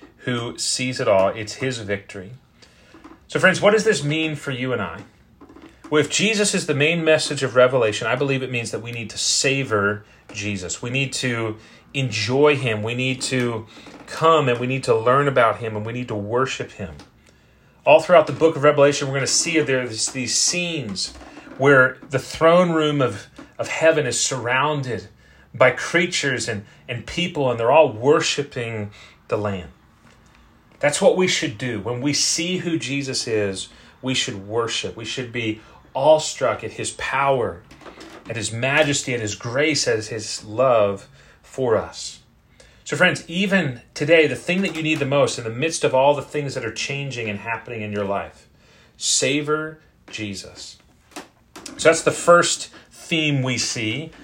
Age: 30-49